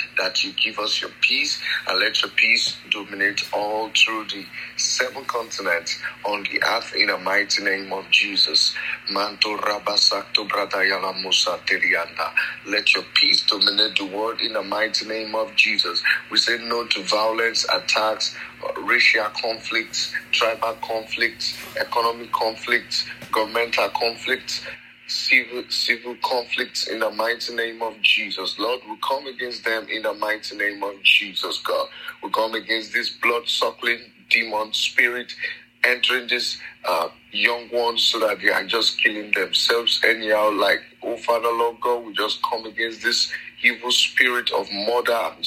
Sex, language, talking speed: male, English, 140 wpm